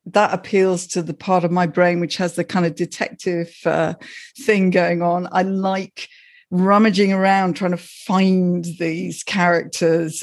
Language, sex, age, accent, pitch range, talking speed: English, female, 50-69, British, 175-200 Hz, 160 wpm